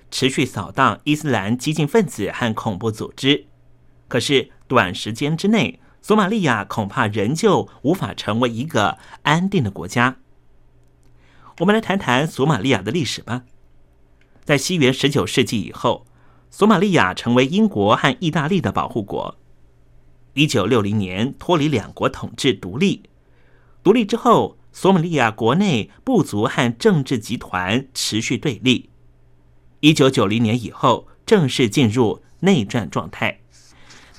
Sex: male